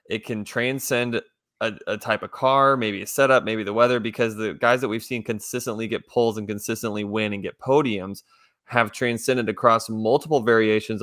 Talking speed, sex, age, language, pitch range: 185 wpm, male, 20-39, English, 105-120 Hz